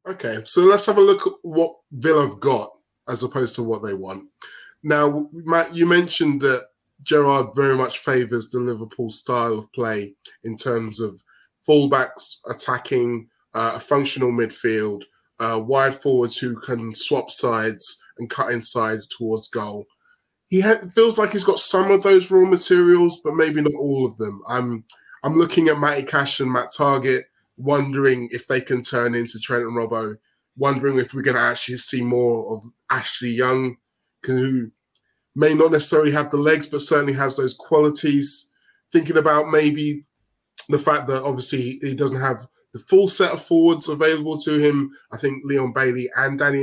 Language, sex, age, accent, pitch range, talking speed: English, male, 20-39, British, 120-155 Hz, 170 wpm